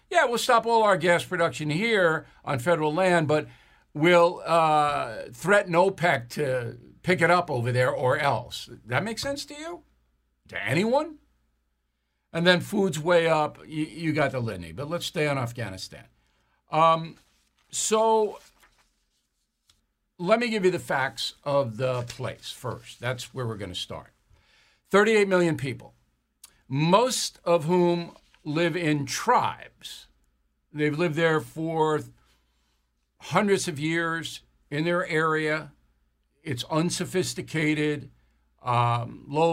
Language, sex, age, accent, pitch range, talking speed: English, male, 60-79, American, 120-180 Hz, 130 wpm